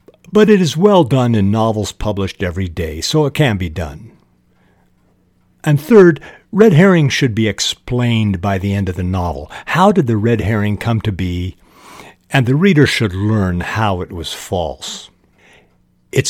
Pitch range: 90-120 Hz